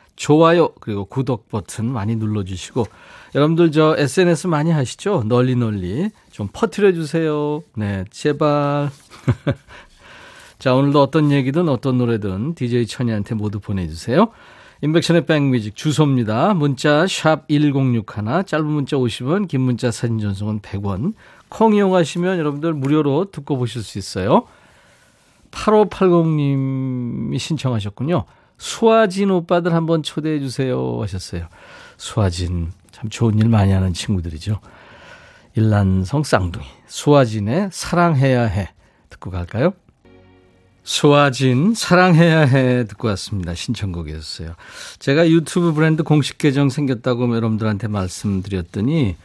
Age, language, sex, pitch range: 40-59, Korean, male, 105-155 Hz